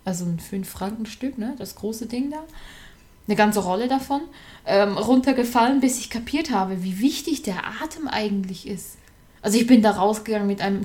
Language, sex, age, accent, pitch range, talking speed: German, female, 20-39, German, 185-235 Hz, 170 wpm